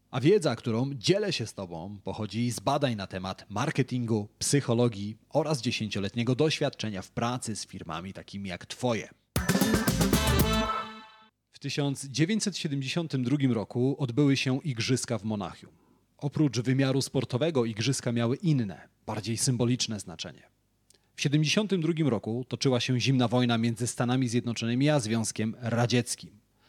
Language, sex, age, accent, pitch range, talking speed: Polish, male, 30-49, native, 110-135 Hz, 120 wpm